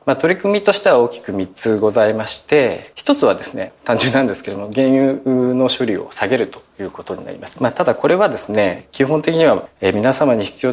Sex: male